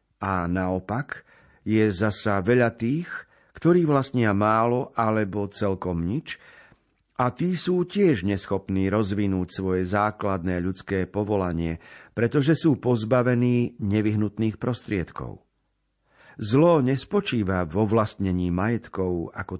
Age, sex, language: 50-69, male, Slovak